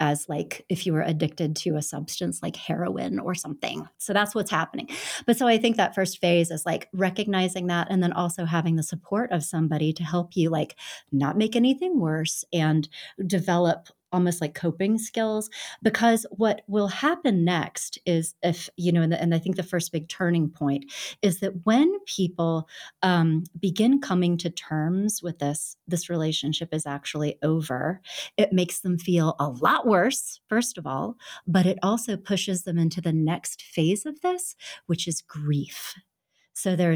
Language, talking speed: English, 180 wpm